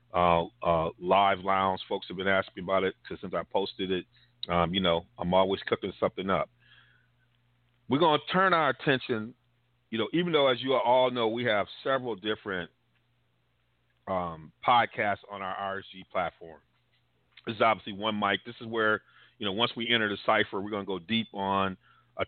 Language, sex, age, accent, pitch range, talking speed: English, male, 40-59, American, 95-115 Hz, 190 wpm